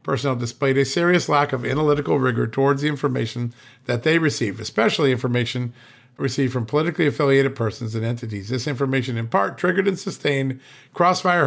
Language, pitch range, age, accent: English, 120-145 Hz, 50-69, American